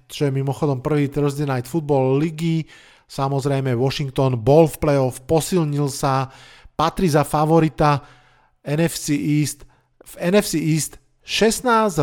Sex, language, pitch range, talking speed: male, Slovak, 130-150 Hz, 115 wpm